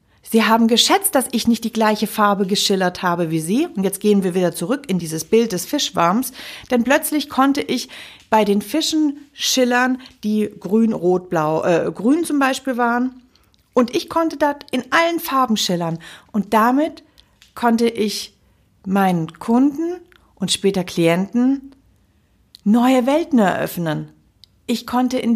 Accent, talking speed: German, 150 wpm